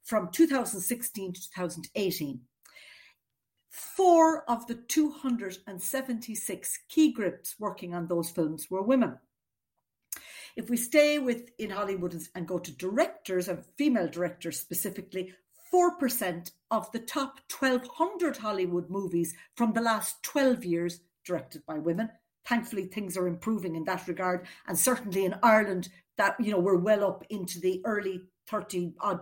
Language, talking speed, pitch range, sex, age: English, 140 wpm, 185-270 Hz, female, 60-79